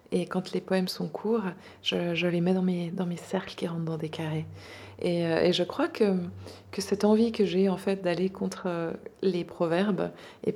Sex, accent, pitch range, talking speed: female, French, 180-210 Hz, 210 wpm